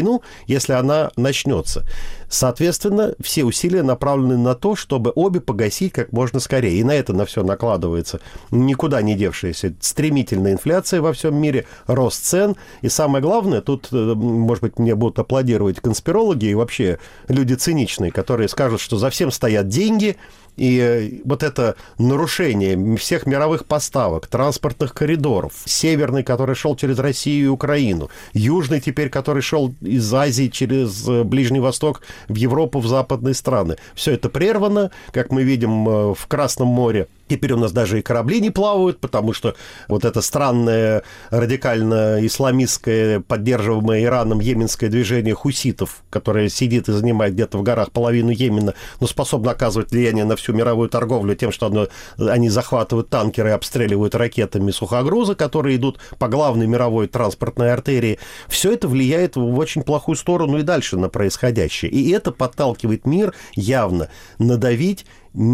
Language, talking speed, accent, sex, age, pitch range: Russian, 145 wpm, native, male, 40-59, 110-140 Hz